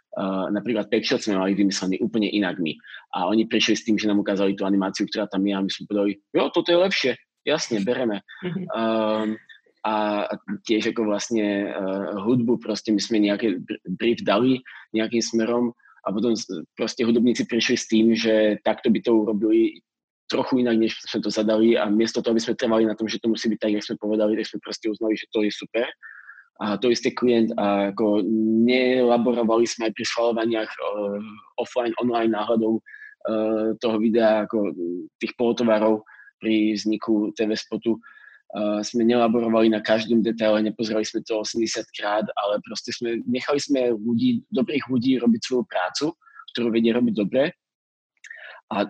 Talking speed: 175 wpm